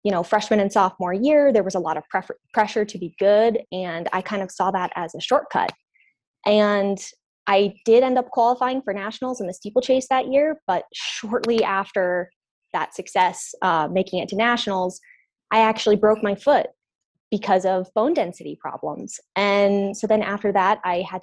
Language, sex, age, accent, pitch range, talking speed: English, female, 20-39, American, 190-225 Hz, 180 wpm